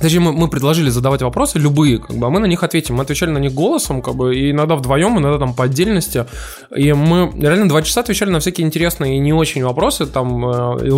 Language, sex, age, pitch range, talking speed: Russian, male, 20-39, 125-160 Hz, 215 wpm